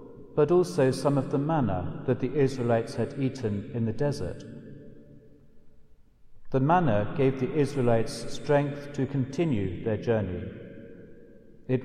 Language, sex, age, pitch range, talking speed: English, male, 50-69, 115-140 Hz, 125 wpm